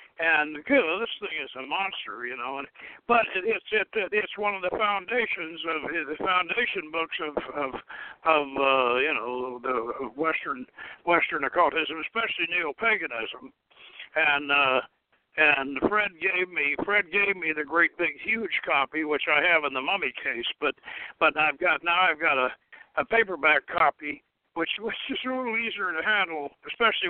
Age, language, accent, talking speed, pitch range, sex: 60-79, English, American, 170 wpm, 160-235 Hz, male